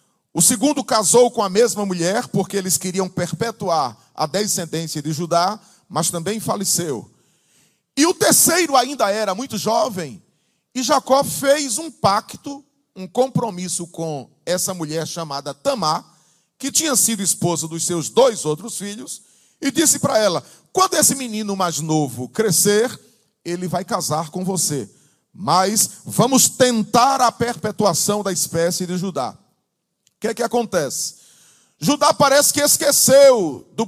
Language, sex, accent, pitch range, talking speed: Portuguese, male, Brazilian, 180-255 Hz, 140 wpm